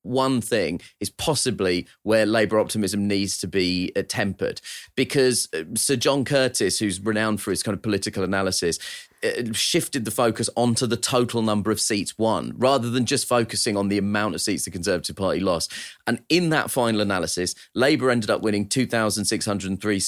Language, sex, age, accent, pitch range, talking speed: English, male, 30-49, British, 105-125 Hz, 175 wpm